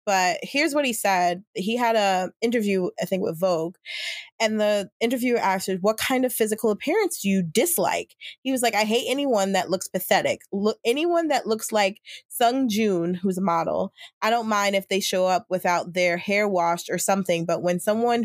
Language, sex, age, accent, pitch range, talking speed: English, female, 20-39, American, 185-230 Hz, 200 wpm